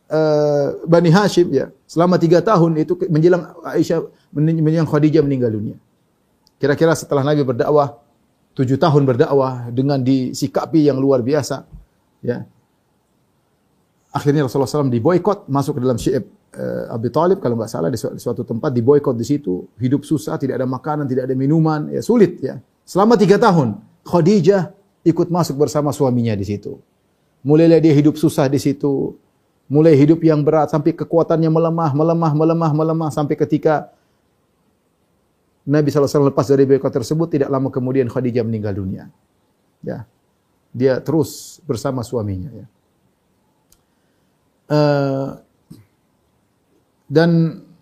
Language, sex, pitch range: Indonesian, male, 135-165 Hz